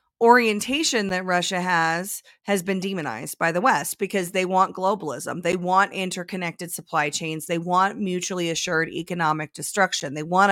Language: English